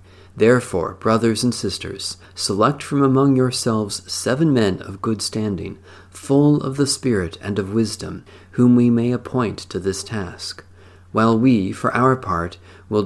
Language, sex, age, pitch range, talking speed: English, male, 40-59, 95-125 Hz, 150 wpm